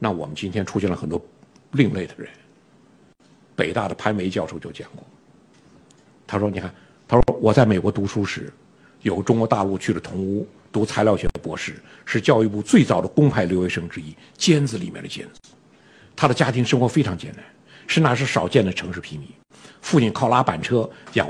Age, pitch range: 50-69, 100-140 Hz